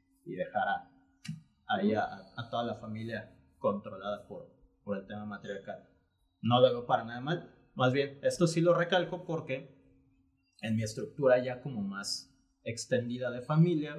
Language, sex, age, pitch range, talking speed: Spanish, male, 30-49, 105-155 Hz, 165 wpm